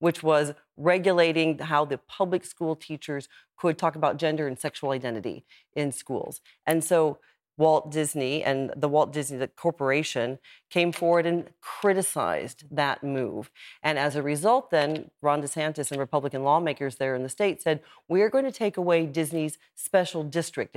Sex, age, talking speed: female, 40-59, 160 wpm